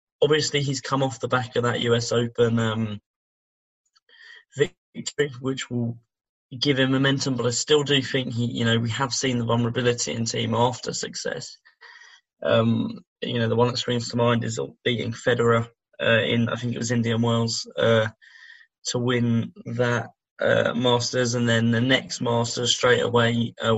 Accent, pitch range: British, 115-125 Hz